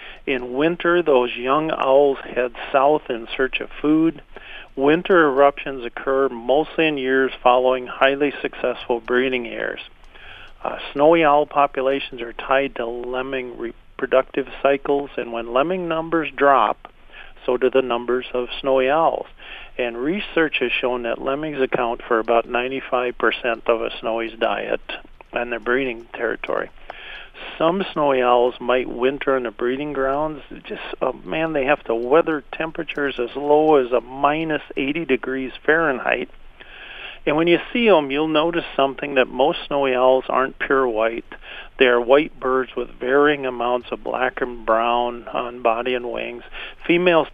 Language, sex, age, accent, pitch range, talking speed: English, male, 50-69, American, 125-145 Hz, 150 wpm